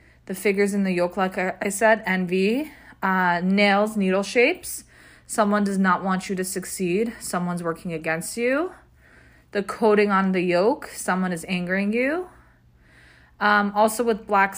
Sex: female